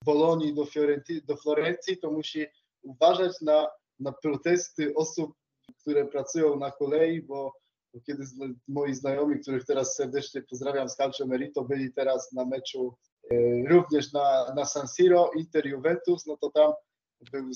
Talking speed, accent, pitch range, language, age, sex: 140 wpm, native, 140-160 Hz, Polish, 20-39, male